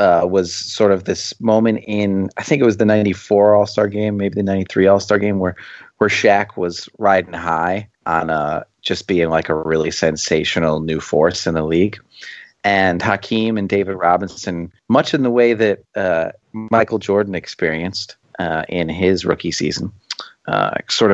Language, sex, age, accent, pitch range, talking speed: English, male, 30-49, American, 85-105 Hz, 170 wpm